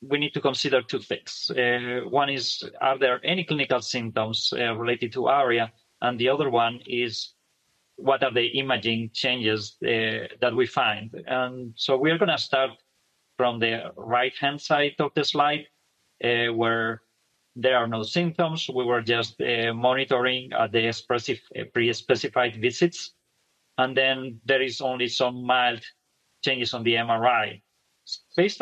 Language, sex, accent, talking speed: English, male, Spanish, 150 wpm